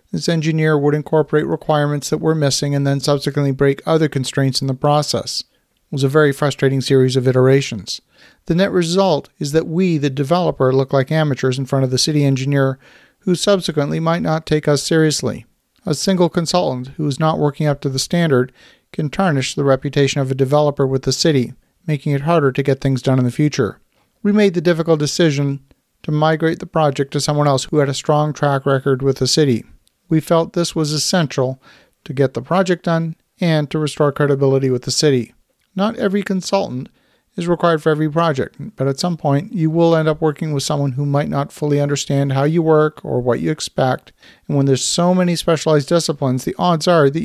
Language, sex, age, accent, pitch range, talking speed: English, male, 40-59, American, 135-165 Hz, 205 wpm